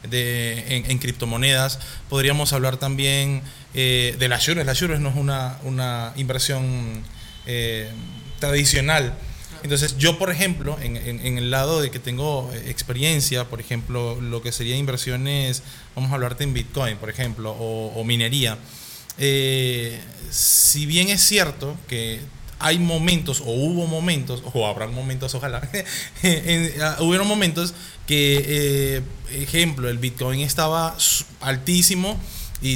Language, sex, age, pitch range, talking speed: Spanish, male, 20-39, 125-155 Hz, 135 wpm